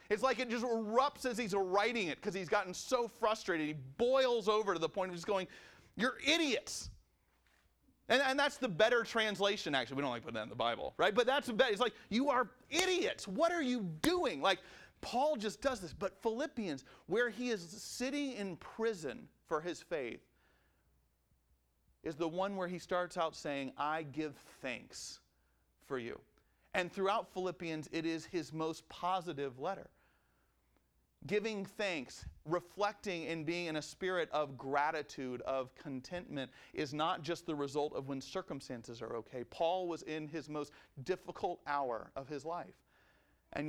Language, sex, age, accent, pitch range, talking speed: English, male, 40-59, American, 135-210 Hz, 170 wpm